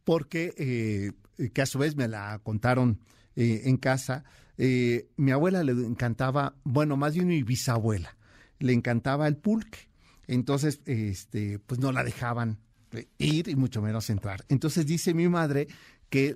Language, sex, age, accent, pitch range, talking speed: Spanish, male, 50-69, Mexican, 115-150 Hz, 155 wpm